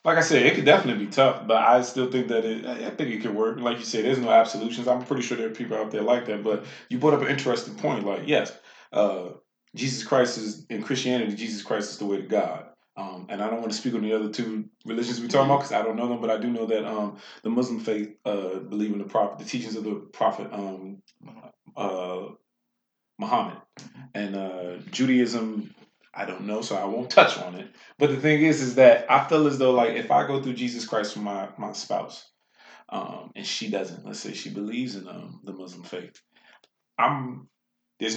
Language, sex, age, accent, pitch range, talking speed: English, male, 20-39, American, 105-135 Hz, 230 wpm